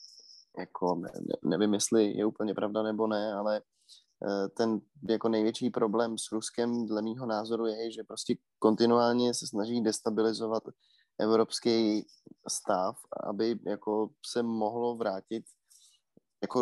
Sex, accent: male, native